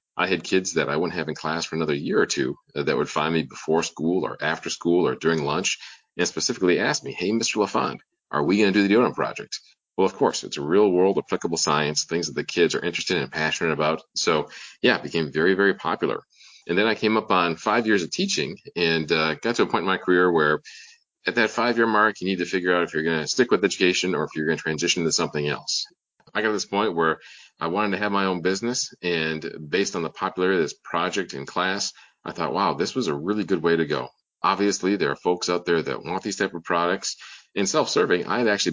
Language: English